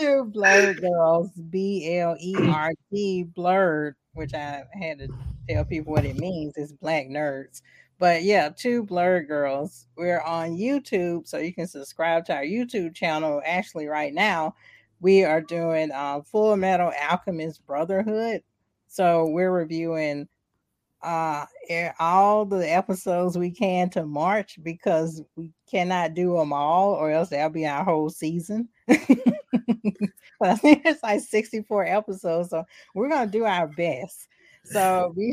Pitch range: 150-195 Hz